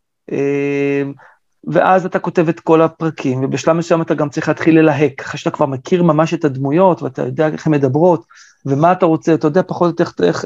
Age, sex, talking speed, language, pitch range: 40-59, male, 200 wpm, Hebrew, 140-170 Hz